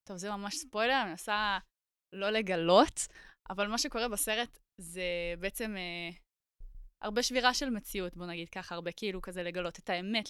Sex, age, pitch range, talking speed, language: female, 20-39, 185-240 Hz, 165 wpm, Hebrew